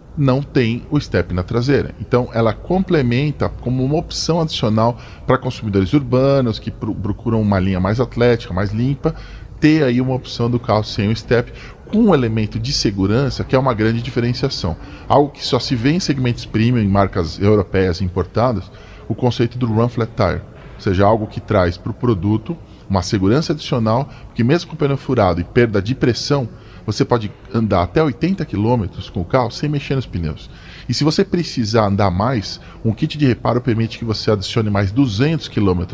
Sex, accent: male, Brazilian